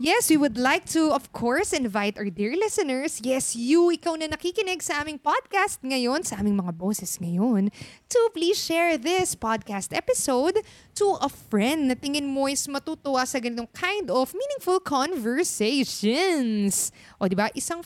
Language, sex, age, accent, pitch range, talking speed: Filipino, female, 20-39, native, 210-315 Hz, 165 wpm